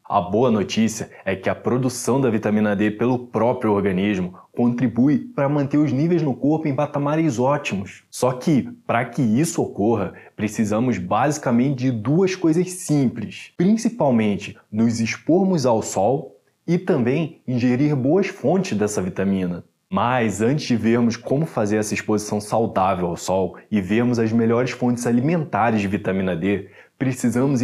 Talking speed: 150 wpm